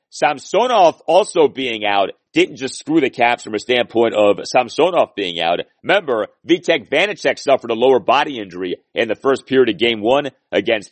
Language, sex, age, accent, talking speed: English, male, 40-59, American, 175 wpm